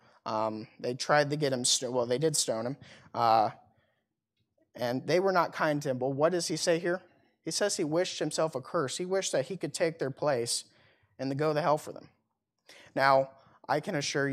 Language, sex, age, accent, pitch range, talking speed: English, male, 30-49, American, 130-160 Hz, 220 wpm